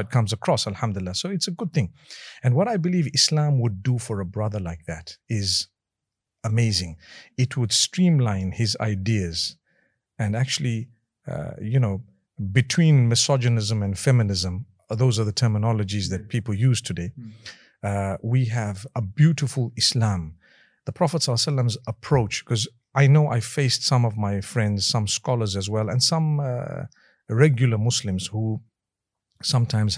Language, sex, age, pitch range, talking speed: English, male, 50-69, 100-130 Hz, 150 wpm